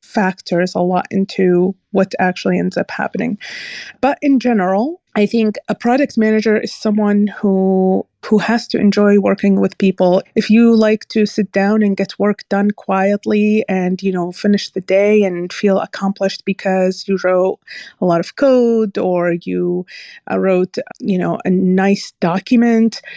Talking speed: 160 wpm